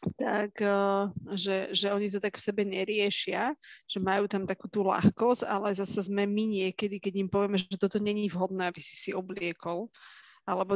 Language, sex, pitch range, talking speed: Slovak, female, 180-200 Hz, 180 wpm